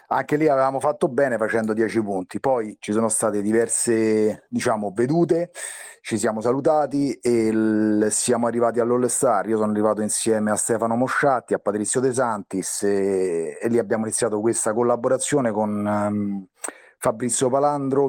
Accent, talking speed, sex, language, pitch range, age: native, 150 wpm, male, Italian, 105-125 Hz, 30-49